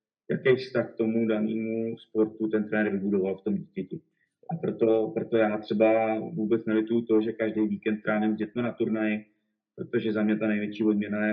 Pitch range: 105-115 Hz